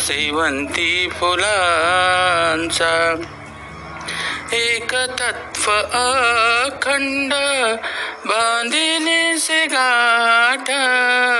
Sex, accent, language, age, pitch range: male, native, Marathi, 50-69, 190-255 Hz